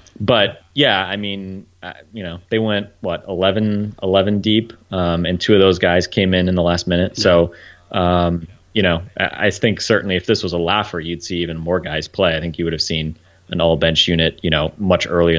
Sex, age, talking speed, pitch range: male, 30-49, 220 wpm, 85-100 Hz